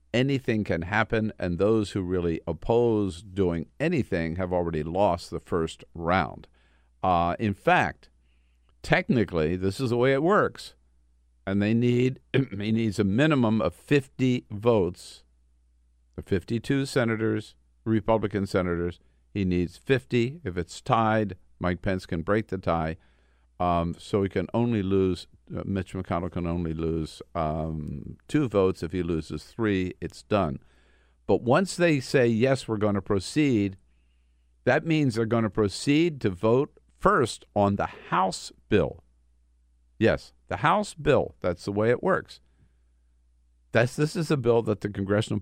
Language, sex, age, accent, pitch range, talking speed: English, male, 50-69, American, 80-110 Hz, 150 wpm